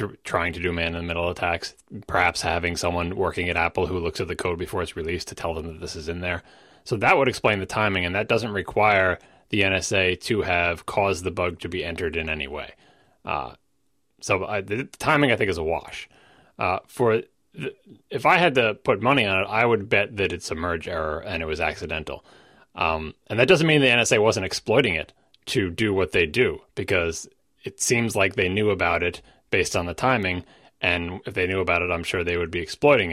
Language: English